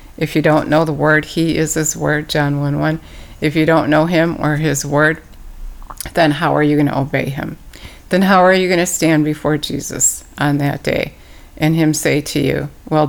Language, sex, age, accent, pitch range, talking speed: English, female, 60-79, American, 145-170 Hz, 210 wpm